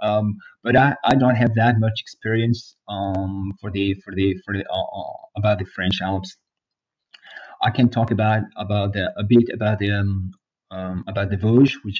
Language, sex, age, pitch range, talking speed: English, male, 30-49, 100-120 Hz, 185 wpm